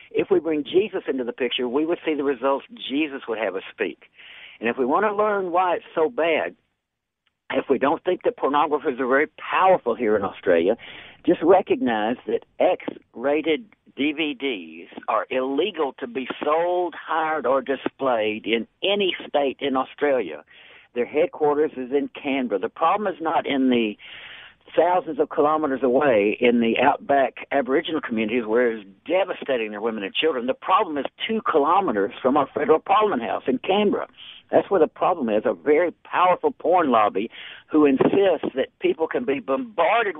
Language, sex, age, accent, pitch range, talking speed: English, male, 60-79, American, 130-195 Hz, 170 wpm